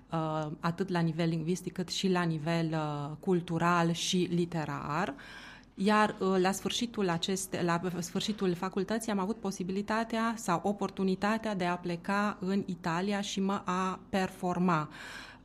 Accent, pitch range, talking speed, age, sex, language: native, 170-210 Hz, 115 wpm, 30-49, female, Romanian